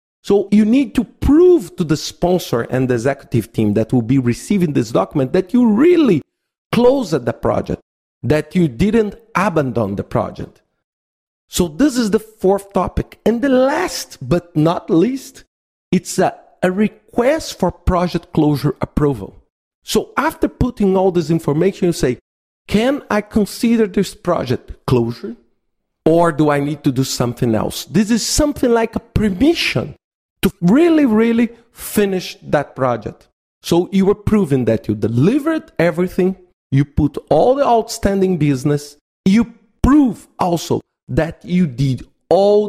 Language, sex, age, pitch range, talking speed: English, male, 50-69, 140-210 Hz, 150 wpm